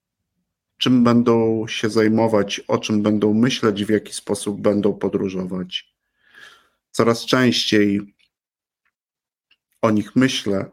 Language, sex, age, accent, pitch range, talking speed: Polish, male, 50-69, native, 105-120 Hz, 100 wpm